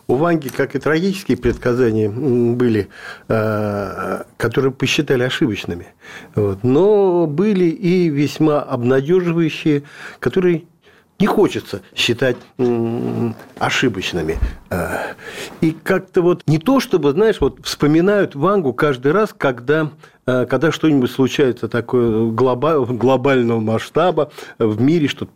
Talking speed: 100 wpm